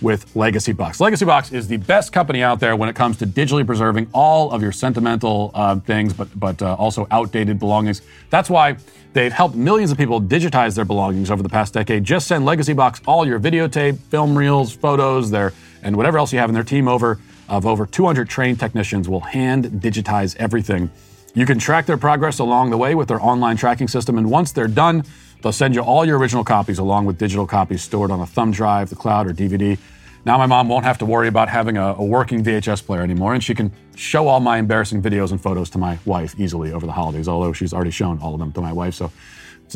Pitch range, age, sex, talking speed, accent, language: 100-125 Hz, 40-59, male, 230 wpm, American, English